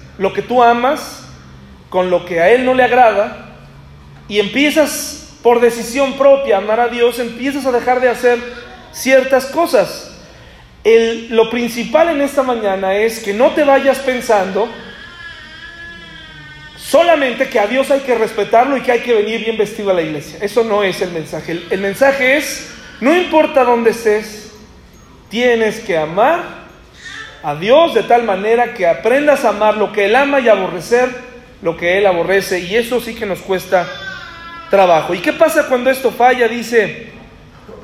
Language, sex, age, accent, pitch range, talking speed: Spanish, male, 40-59, Mexican, 205-265 Hz, 170 wpm